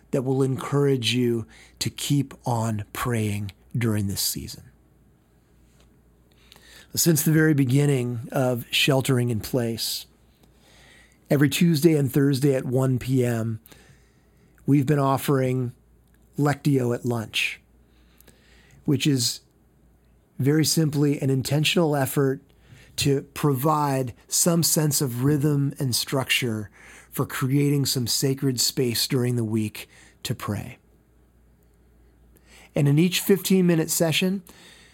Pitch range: 105-145 Hz